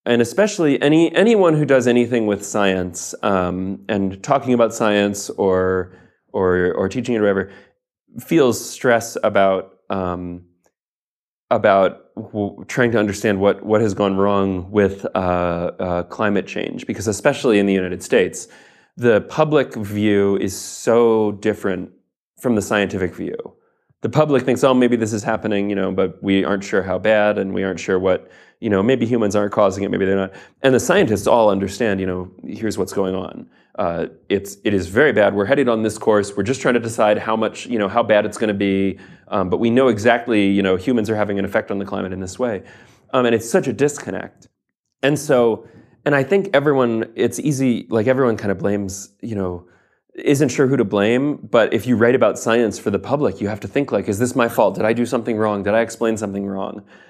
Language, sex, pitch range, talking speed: English, male, 95-120 Hz, 205 wpm